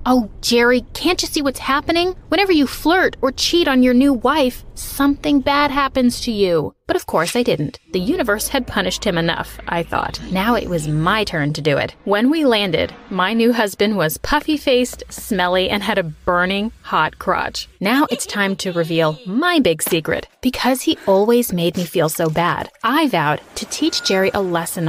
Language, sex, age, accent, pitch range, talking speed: English, female, 30-49, American, 180-265 Hz, 195 wpm